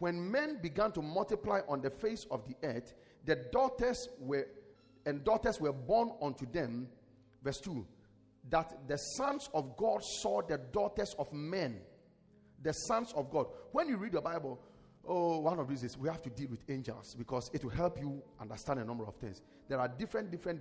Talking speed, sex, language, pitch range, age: 185 wpm, male, English, 125-170 Hz, 40-59